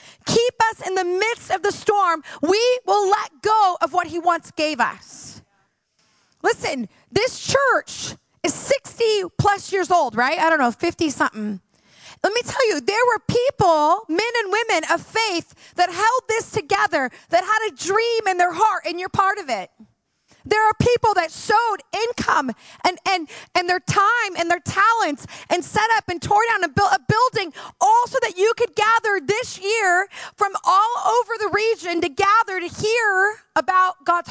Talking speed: 180 wpm